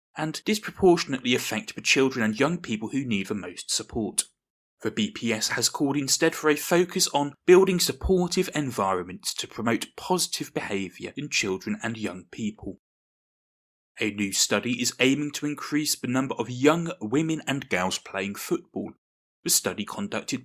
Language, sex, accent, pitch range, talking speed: English, male, British, 115-160 Hz, 155 wpm